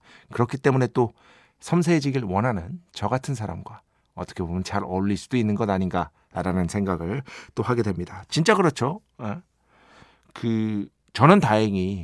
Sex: male